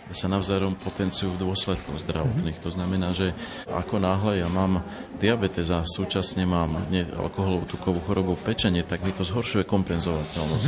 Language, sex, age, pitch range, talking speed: Slovak, male, 40-59, 85-95 Hz, 145 wpm